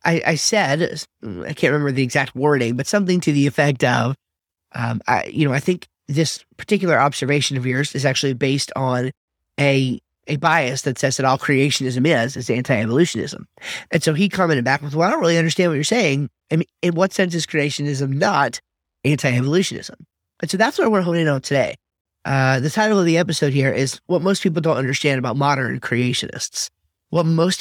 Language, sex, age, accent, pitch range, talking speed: English, male, 30-49, American, 130-165 Hz, 195 wpm